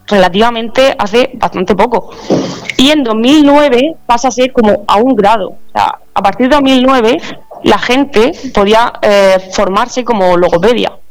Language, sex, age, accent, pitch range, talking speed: Spanish, female, 20-39, Spanish, 185-235 Hz, 145 wpm